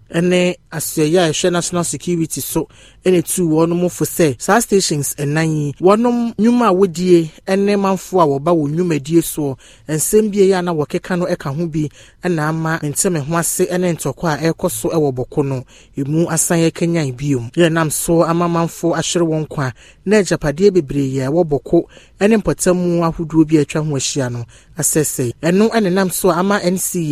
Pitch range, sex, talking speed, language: 140-175 Hz, male, 165 wpm, English